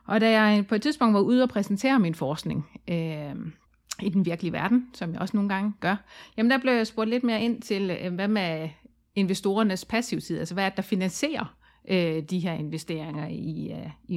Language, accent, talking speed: Danish, native, 210 wpm